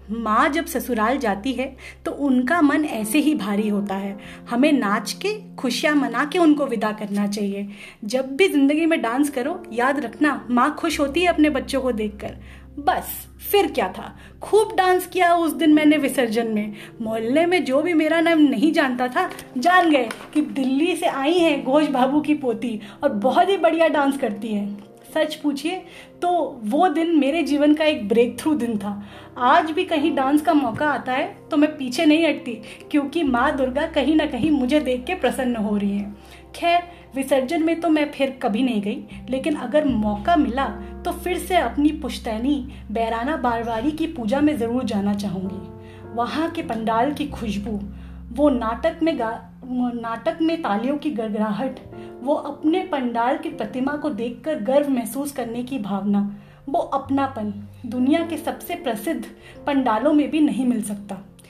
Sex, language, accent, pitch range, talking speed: female, Hindi, native, 230-305 Hz, 175 wpm